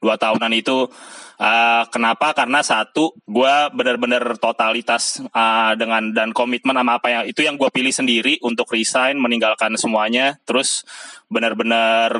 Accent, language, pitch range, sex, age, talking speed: native, Indonesian, 115-130 Hz, male, 20-39, 140 wpm